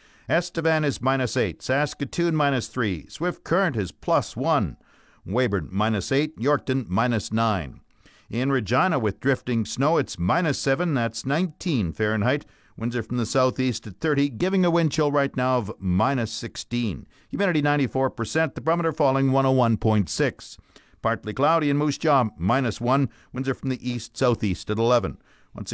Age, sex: 60-79, male